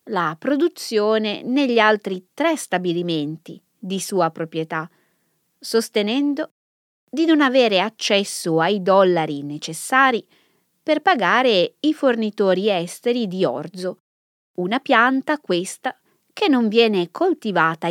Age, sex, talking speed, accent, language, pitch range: 20-39, female, 105 wpm, native, Italian, 170-265 Hz